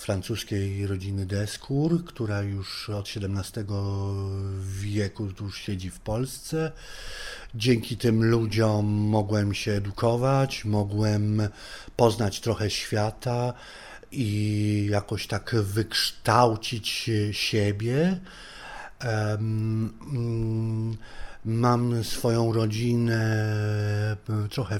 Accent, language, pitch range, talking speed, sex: native, Polish, 105-125 Hz, 80 wpm, male